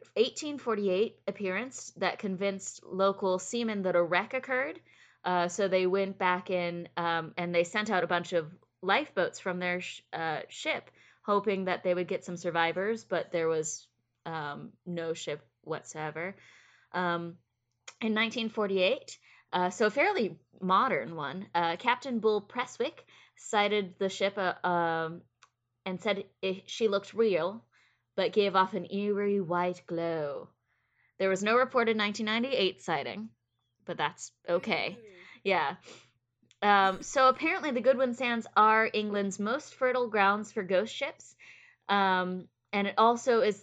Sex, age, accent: female, 20-39, American